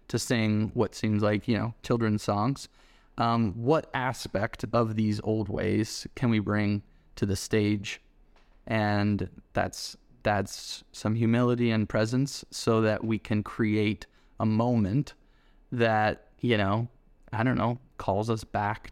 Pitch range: 105-115 Hz